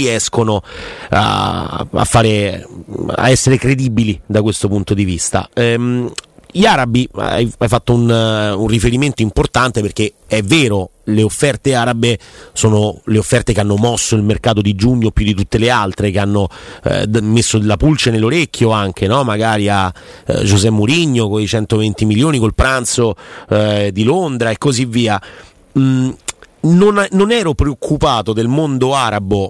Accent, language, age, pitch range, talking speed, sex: native, Italian, 30-49, 105-130 Hz, 155 wpm, male